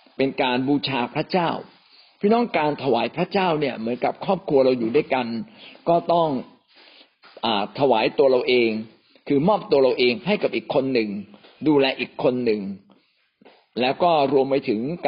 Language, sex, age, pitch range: Thai, male, 60-79, 125-170 Hz